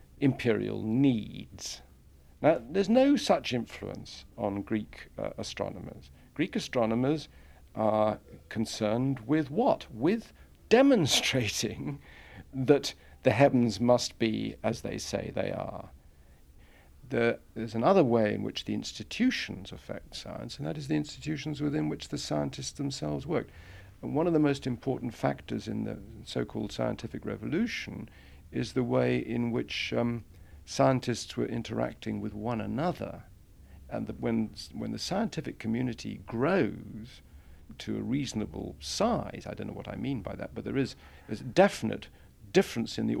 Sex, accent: male, British